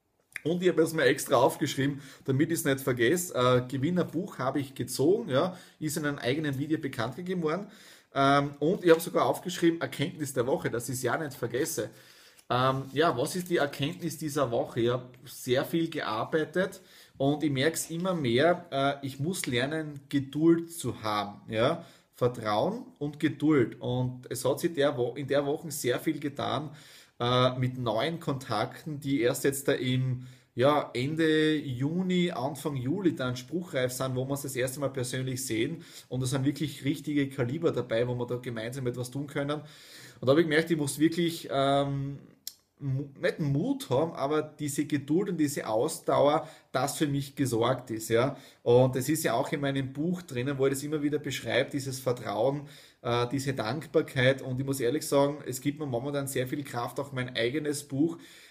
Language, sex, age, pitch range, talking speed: German, male, 30-49, 130-155 Hz, 185 wpm